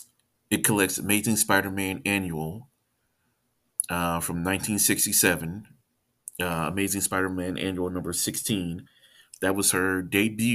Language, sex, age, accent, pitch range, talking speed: English, male, 30-49, American, 90-105 Hz, 100 wpm